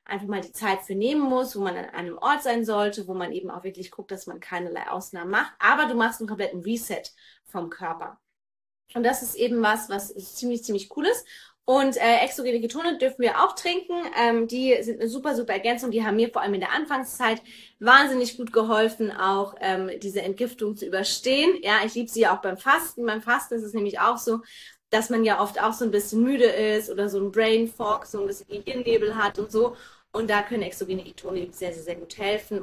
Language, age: German, 20-39